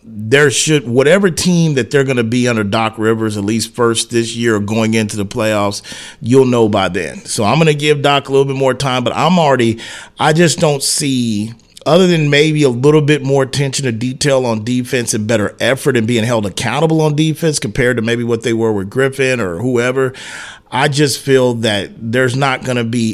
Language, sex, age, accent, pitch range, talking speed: English, male, 40-59, American, 110-140 Hz, 215 wpm